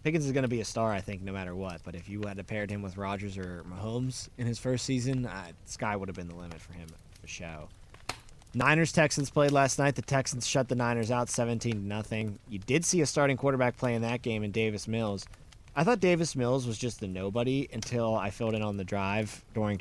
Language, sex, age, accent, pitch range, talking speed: English, male, 20-39, American, 95-125 Hz, 235 wpm